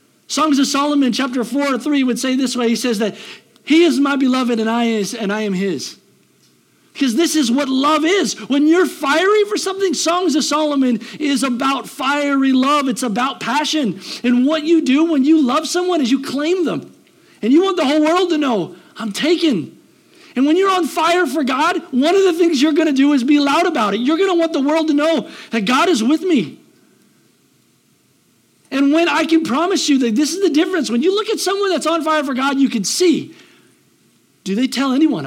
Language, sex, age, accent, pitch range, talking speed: English, male, 50-69, American, 240-325 Hz, 215 wpm